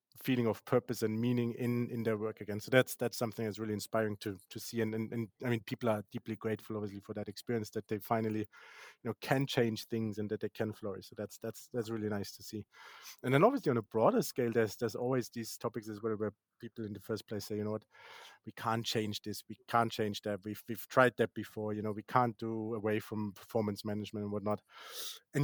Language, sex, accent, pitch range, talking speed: English, male, German, 110-125 Hz, 245 wpm